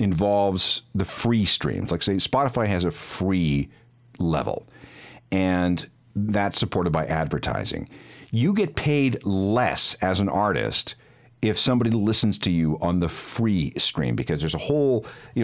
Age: 50-69